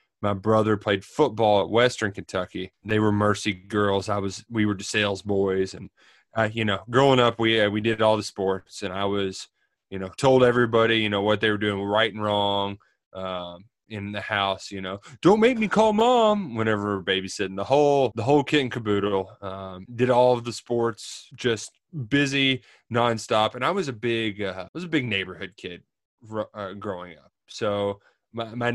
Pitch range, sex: 100-120 Hz, male